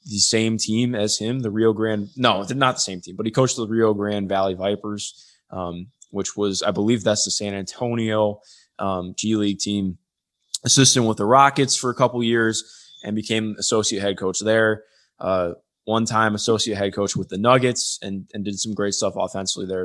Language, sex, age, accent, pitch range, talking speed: English, male, 20-39, American, 95-115 Hz, 205 wpm